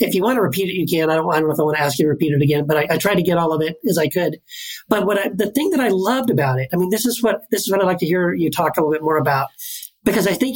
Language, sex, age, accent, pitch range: English, male, 40-59, American, 160-210 Hz